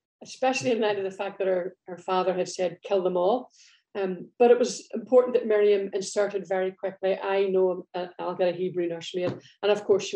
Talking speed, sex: 225 wpm, female